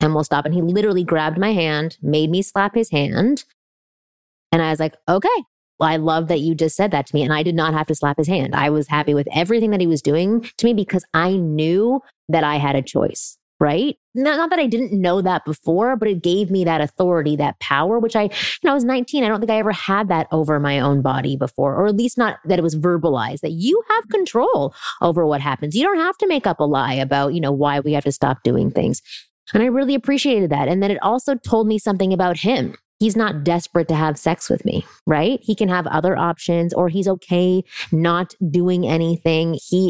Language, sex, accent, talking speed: English, female, American, 240 wpm